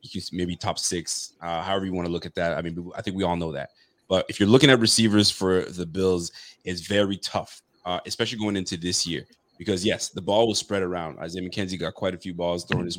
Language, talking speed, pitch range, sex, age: English, 250 wpm, 95-115 Hz, male, 30-49